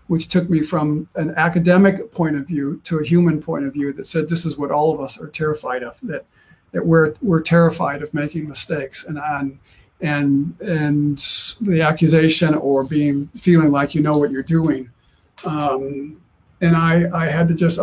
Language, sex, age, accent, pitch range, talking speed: English, male, 50-69, American, 150-170 Hz, 185 wpm